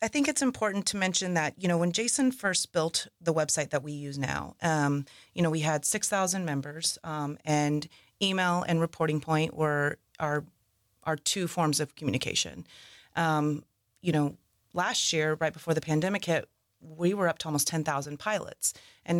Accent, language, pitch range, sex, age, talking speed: American, English, 145-175 Hz, female, 30-49, 180 wpm